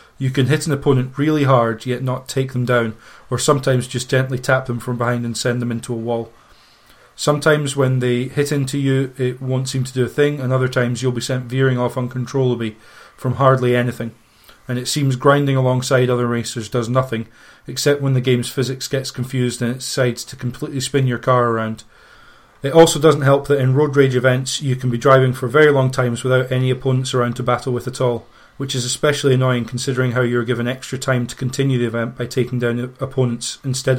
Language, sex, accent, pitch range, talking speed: English, male, British, 125-135 Hz, 215 wpm